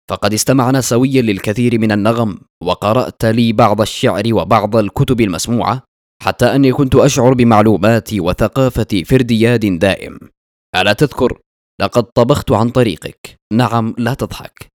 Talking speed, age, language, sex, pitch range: 120 wpm, 20-39, Arabic, male, 105-125 Hz